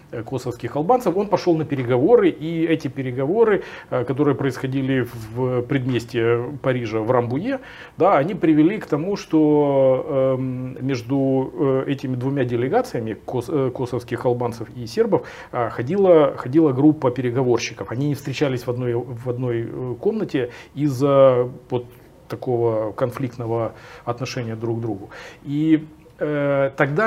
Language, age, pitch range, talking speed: Russian, 40-59, 125-150 Hz, 105 wpm